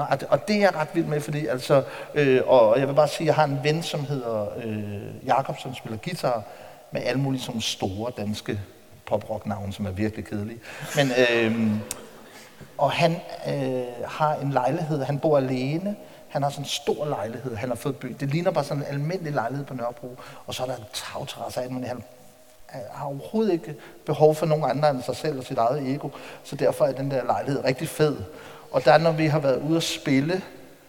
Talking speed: 215 wpm